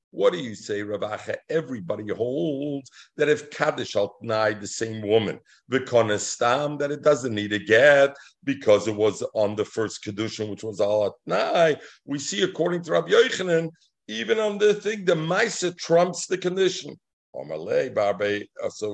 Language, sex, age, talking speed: English, male, 50-69, 160 wpm